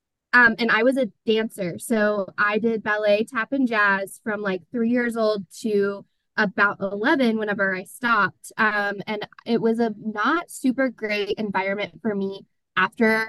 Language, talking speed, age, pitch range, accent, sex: English, 165 wpm, 20-39, 200-235 Hz, American, female